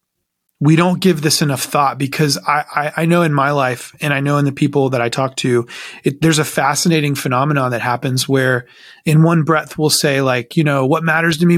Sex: male